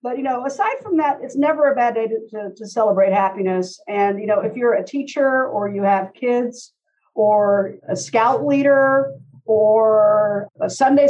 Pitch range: 210-265 Hz